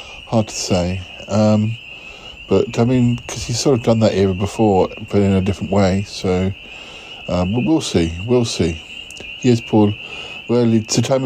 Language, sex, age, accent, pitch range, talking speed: English, male, 50-69, British, 100-120 Hz, 170 wpm